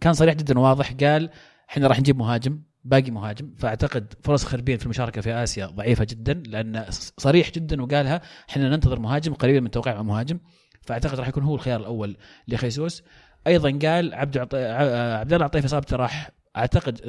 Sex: male